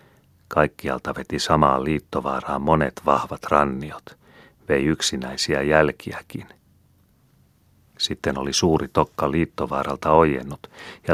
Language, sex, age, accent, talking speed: Finnish, male, 40-59, native, 90 wpm